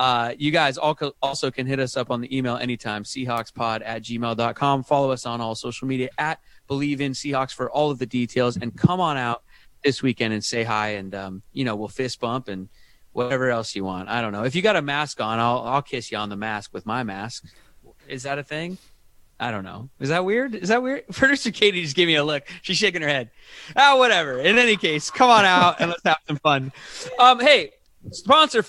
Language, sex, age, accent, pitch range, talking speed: English, male, 30-49, American, 115-150 Hz, 230 wpm